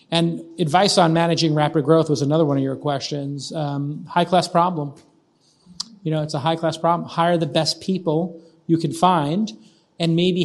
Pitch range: 155-180 Hz